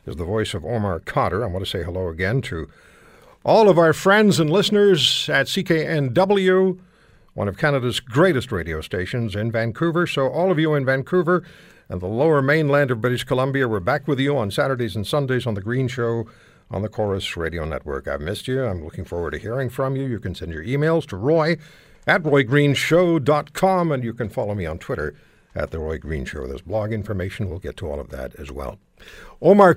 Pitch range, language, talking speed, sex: 100-160 Hz, English, 205 wpm, male